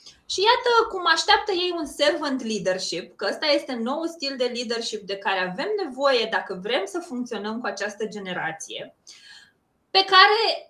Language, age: Romanian, 20-39